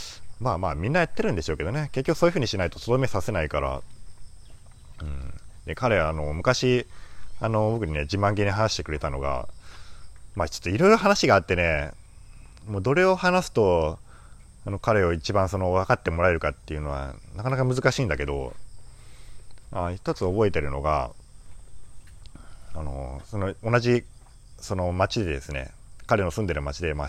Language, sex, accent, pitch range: Japanese, male, native, 75-115 Hz